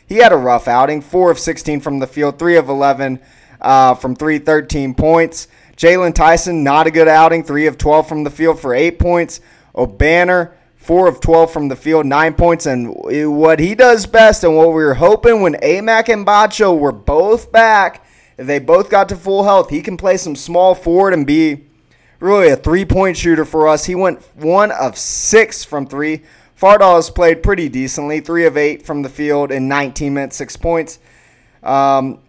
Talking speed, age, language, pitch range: 195 wpm, 20-39, English, 145-170 Hz